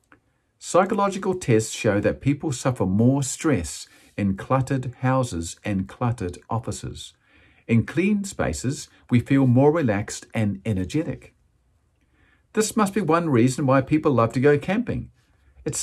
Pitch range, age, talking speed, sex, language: 110-155 Hz, 50-69, 135 wpm, male, English